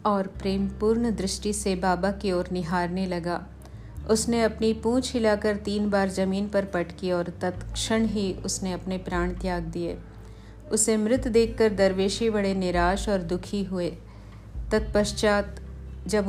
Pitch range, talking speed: 180-205 Hz, 135 wpm